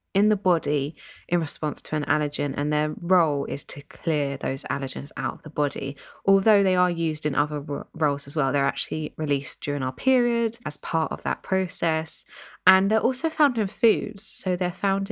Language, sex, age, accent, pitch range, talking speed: English, female, 20-39, British, 145-180 Hz, 195 wpm